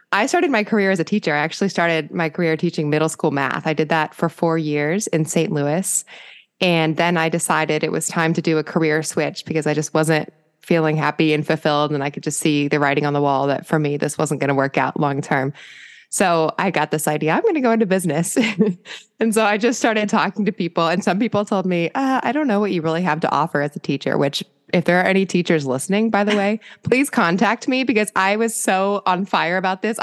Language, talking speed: English, 245 wpm